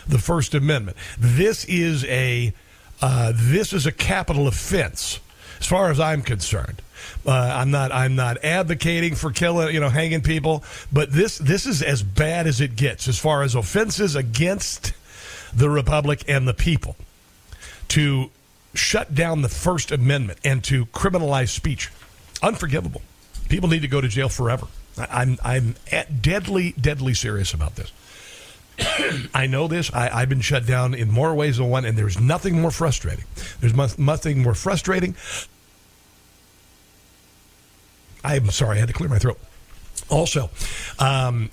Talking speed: 155 wpm